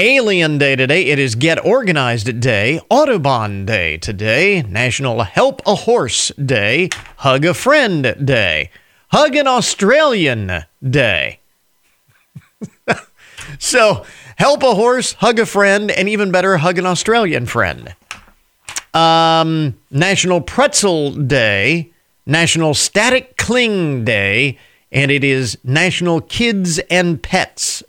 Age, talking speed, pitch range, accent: 40-59, 115 wpm, 130-185 Hz, American